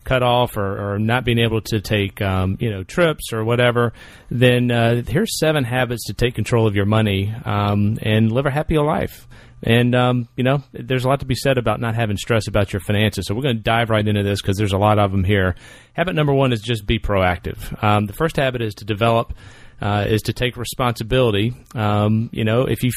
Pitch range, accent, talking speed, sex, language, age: 105-125 Hz, American, 230 wpm, male, English, 40-59